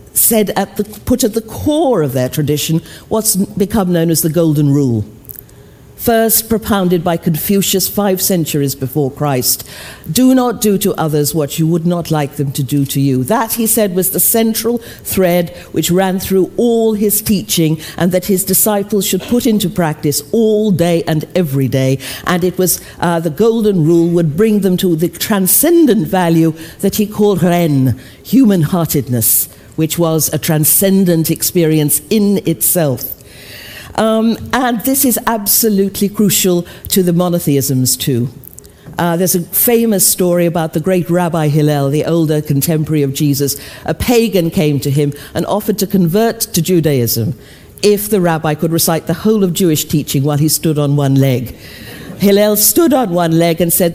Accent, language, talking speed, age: British, English, 170 wpm, 50-69